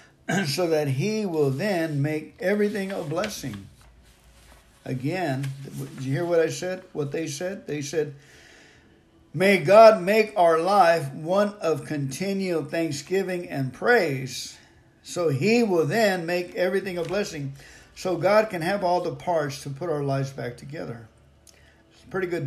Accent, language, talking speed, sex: American, English, 150 wpm, male